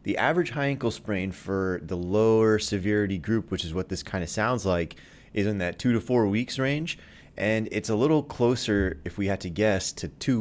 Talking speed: 220 wpm